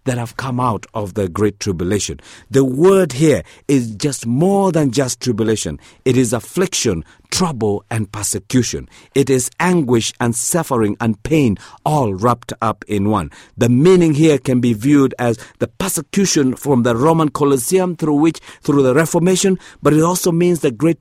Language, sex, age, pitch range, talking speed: English, male, 50-69, 110-160 Hz, 170 wpm